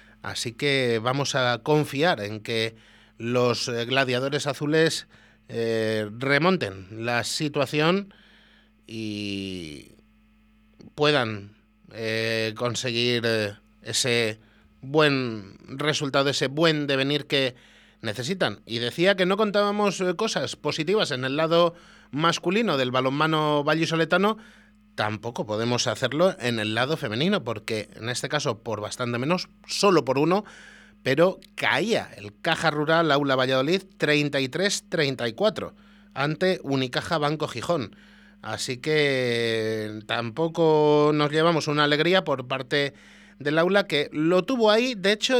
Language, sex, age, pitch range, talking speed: Spanish, male, 30-49, 120-180 Hz, 115 wpm